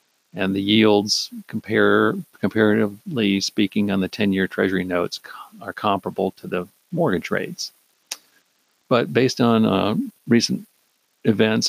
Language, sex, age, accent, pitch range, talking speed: English, male, 50-69, American, 100-130 Hz, 120 wpm